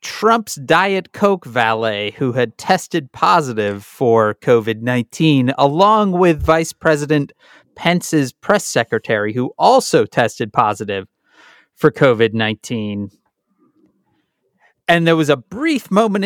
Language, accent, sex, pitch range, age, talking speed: English, American, male, 125-190 Hz, 30-49, 105 wpm